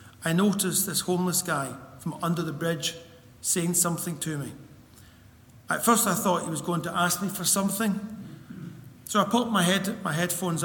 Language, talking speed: English, 175 wpm